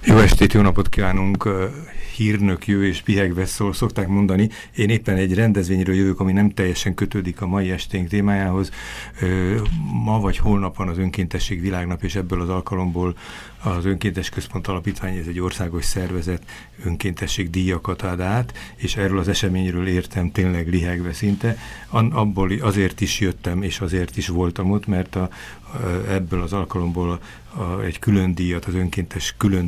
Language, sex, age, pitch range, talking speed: Hungarian, male, 60-79, 90-100 Hz, 150 wpm